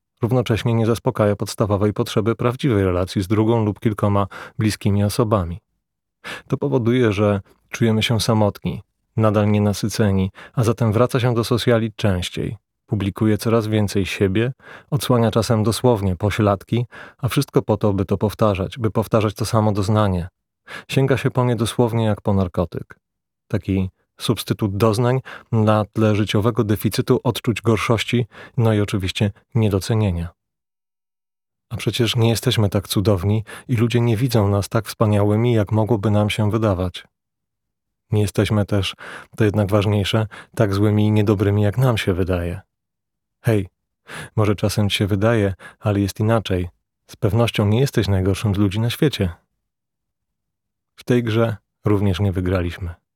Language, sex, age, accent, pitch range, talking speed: Polish, male, 30-49, native, 100-115 Hz, 140 wpm